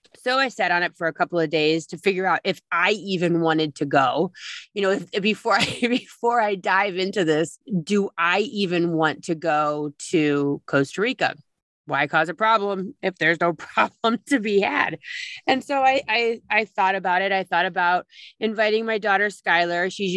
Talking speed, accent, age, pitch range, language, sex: 195 wpm, American, 30-49, 160-200 Hz, English, female